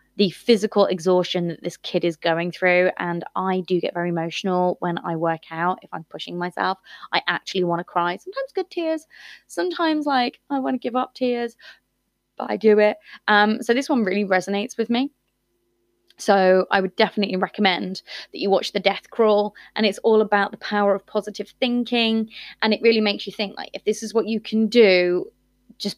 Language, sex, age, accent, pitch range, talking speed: English, female, 20-39, British, 175-215 Hz, 200 wpm